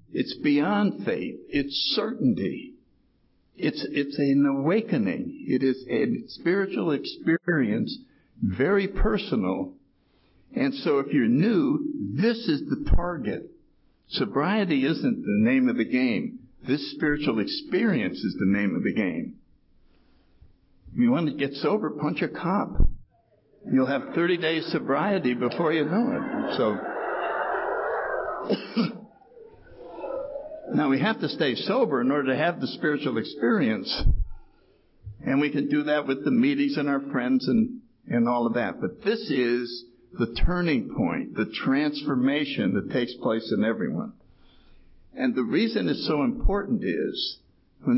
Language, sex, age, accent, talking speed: English, male, 60-79, American, 135 wpm